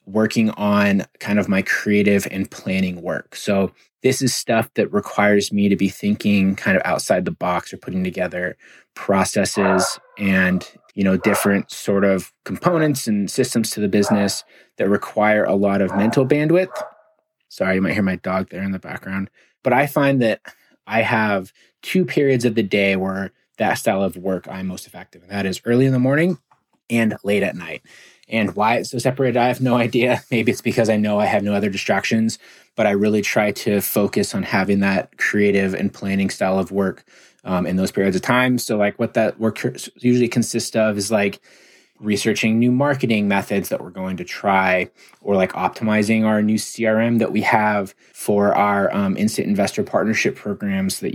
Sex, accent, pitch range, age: male, American, 100-120 Hz, 20-39